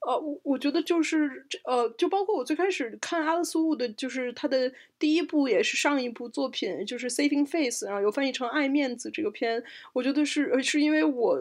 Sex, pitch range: female, 235-300 Hz